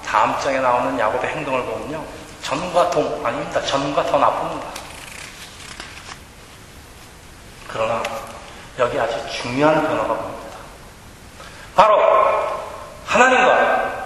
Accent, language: native, Korean